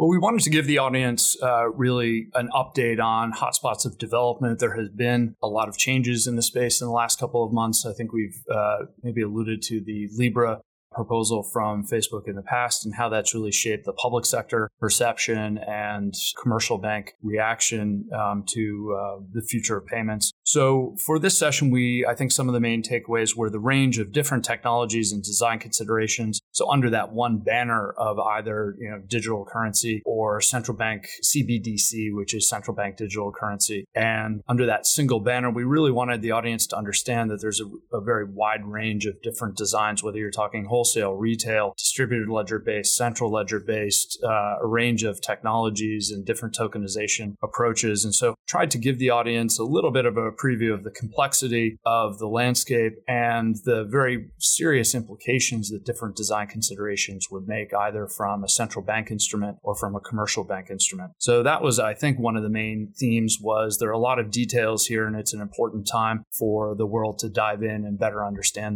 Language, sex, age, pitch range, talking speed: English, male, 30-49, 105-120 Hz, 195 wpm